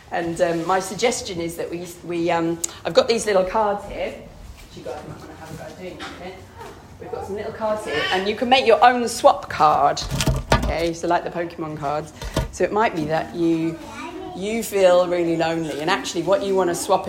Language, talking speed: English, 185 wpm